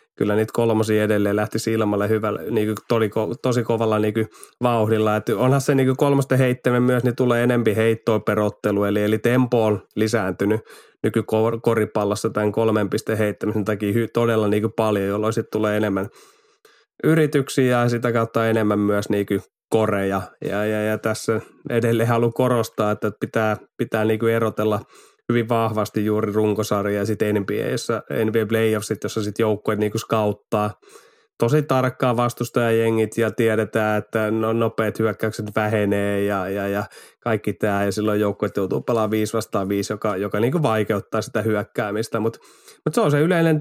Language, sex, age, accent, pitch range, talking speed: Finnish, male, 20-39, native, 105-120 Hz, 150 wpm